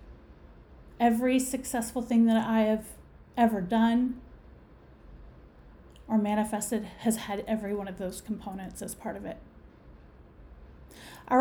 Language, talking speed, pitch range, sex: English, 115 wpm, 215-270 Hz, female